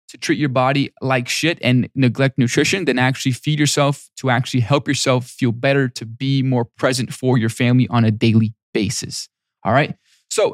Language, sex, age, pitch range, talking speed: English, male, 20-39, 125-165 Hz, 190 wpm